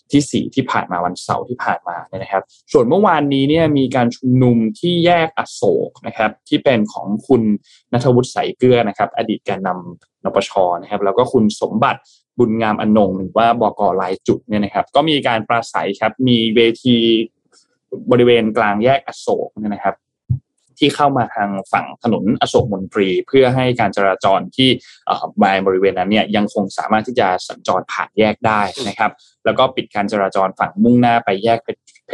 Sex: male